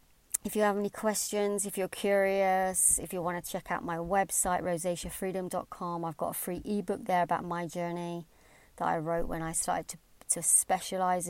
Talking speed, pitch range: 185 wpm, 165-190 Hz